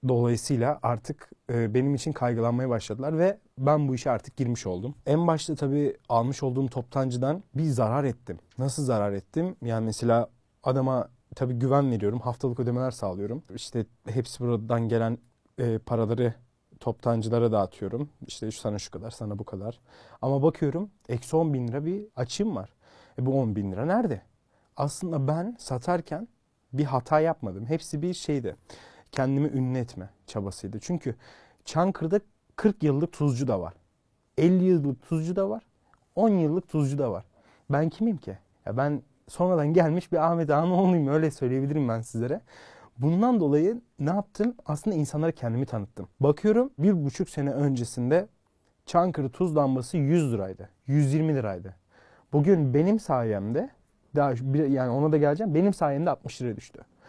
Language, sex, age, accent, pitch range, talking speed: Turkish, male, 40-59, native, 120-155 Hz, 145 wpm